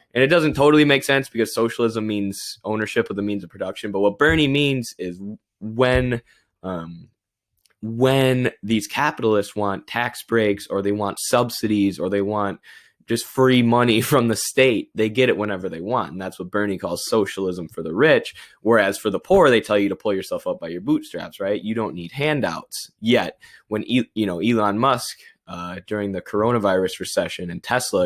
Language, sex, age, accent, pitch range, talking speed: English, male, 20-39, American, 95-120 Hz, 190 wpm